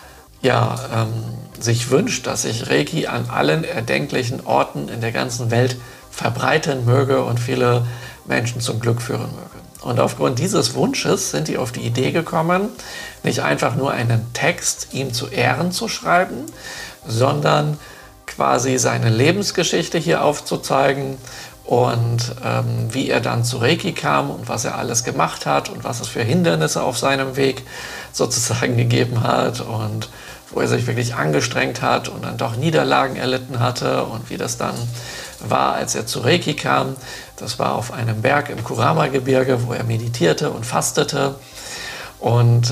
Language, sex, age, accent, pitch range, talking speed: German, male, 50-69, German, 120-135 Hz, 155 wpm